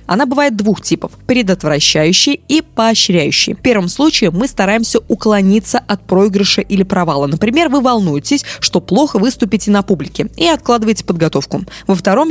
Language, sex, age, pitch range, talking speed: Russian, female, 20-39, 175-240 Hz, 145 wpm